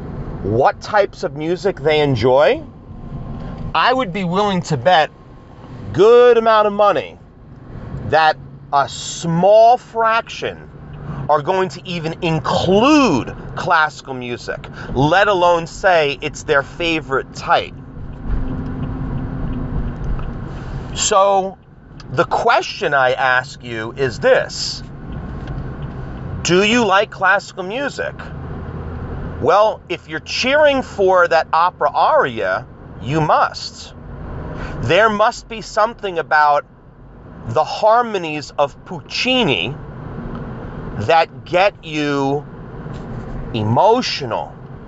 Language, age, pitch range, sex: English, 40-59, 135-200 Hz, male